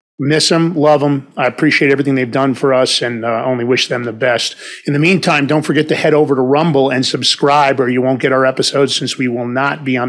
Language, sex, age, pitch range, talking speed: English, male, 40-59, 130-160 Hz, 250 wpm